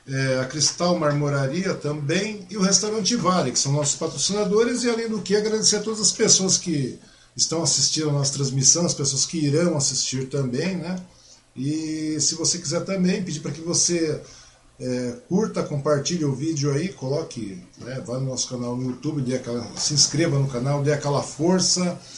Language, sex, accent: Portuguese, male, Brazilian